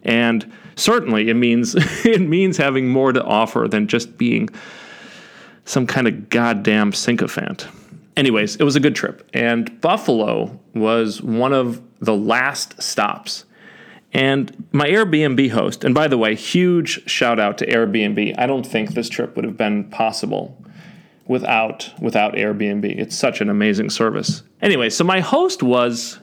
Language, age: English, 40-59